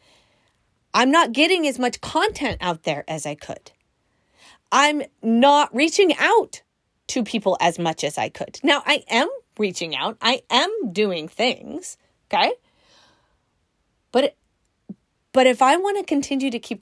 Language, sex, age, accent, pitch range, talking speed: English, female, 30-49, American, 195-285 Hz, 145 wpm